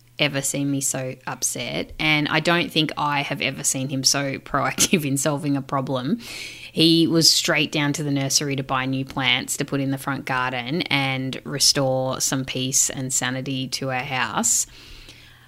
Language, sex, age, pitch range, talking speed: English, female, 30-49, 130-180 Hz, 180 wpm